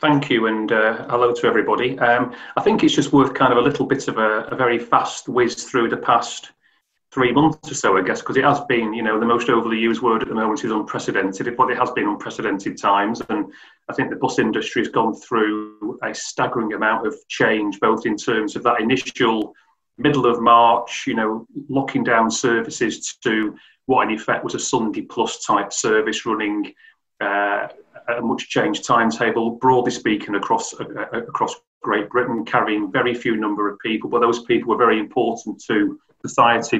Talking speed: 195 wpm